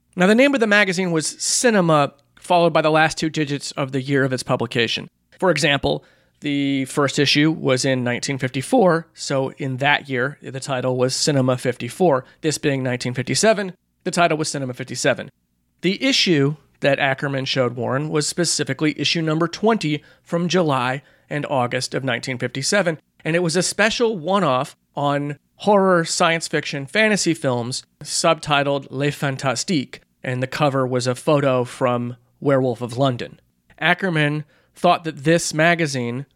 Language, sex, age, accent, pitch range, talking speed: English, male, 30-49, American, 130-170 Hz, 150 wpm